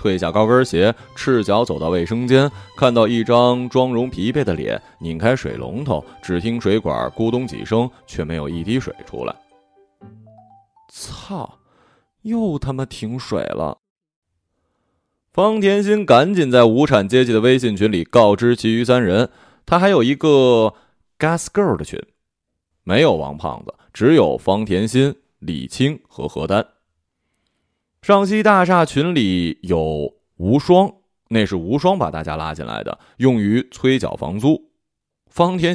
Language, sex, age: Chinese, male, 20-39